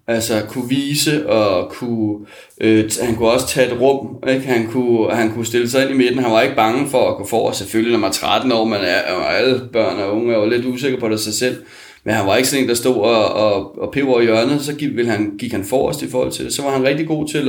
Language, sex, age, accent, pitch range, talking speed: Danish, male, 30-49, native, 115-135 Hz, 280 wpm